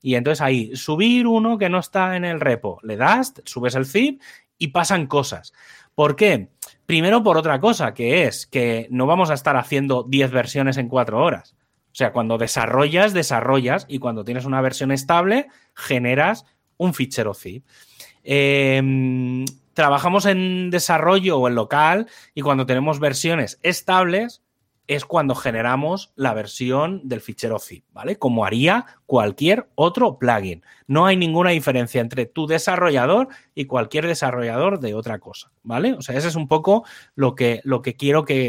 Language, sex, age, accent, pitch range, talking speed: Spanish, male, 30-49, Spanish, 130-175 Hz, 160 wpm